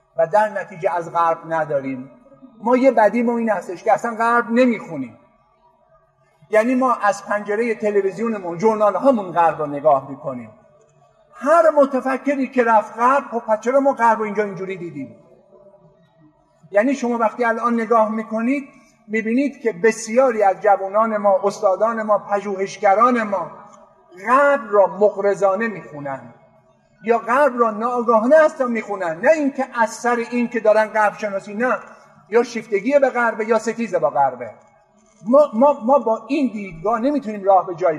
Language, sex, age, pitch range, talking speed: Persian, male, 50-69, 195-245 Hz, 145 wpm